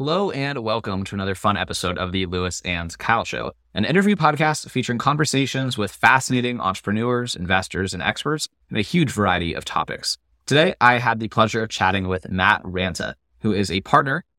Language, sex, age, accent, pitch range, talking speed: English, male, 20-39, American, 95-120 Hz, 185 wpm